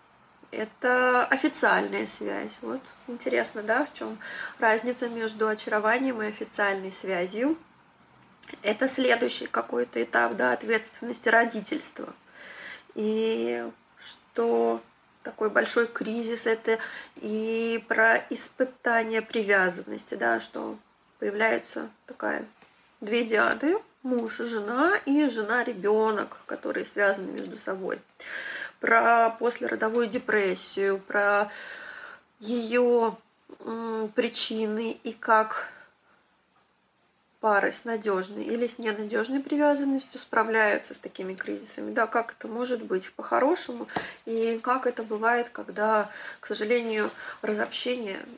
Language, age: Russian, 20-39